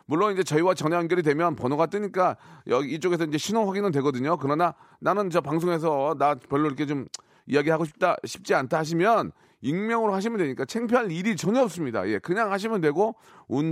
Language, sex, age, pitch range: Korean, male, 40-59, 150-220 Hz